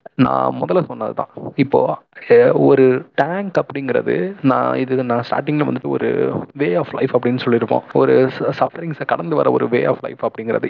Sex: male